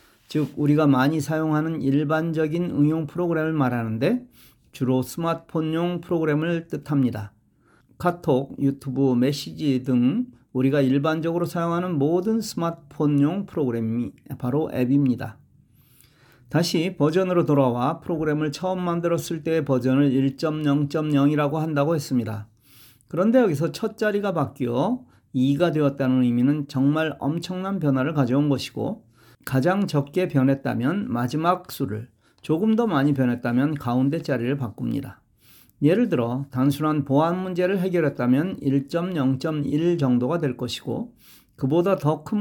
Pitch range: 130-170 Hz